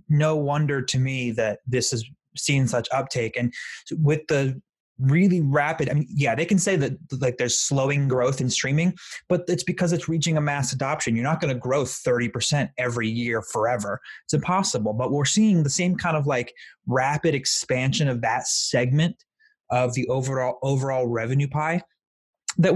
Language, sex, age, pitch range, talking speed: English, male, 20-39, 120-155 Hz, 175 wpm